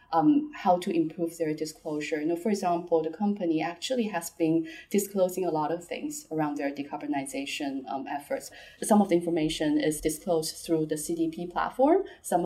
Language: English